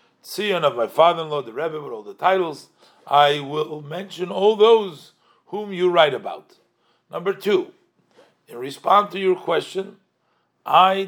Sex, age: male, 50-69